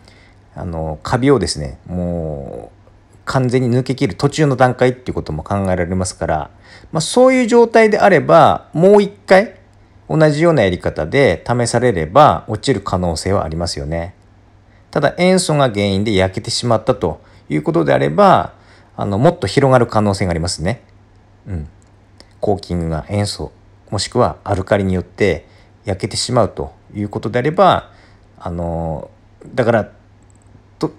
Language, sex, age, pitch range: Japanese, male, 40-59, 100-140 Hz